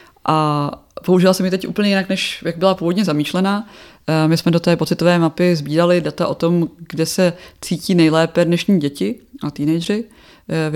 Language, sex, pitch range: Czech, female, 155-180 Hz